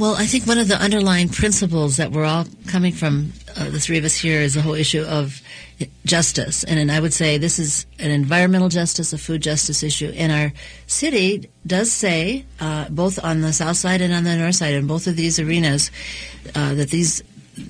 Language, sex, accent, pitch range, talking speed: English, female, American, 150-180 Hz, 215 wpm